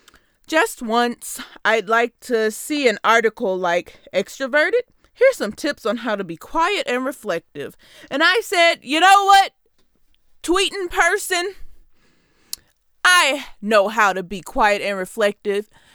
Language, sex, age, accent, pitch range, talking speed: English, female, 20-39, American, 225-355 Hz, 135 wpm